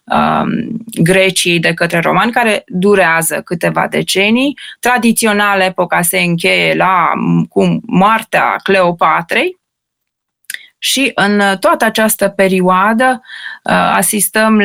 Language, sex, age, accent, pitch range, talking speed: Romanian, female, 20-39, native, 175-215 Hz, 85 wpm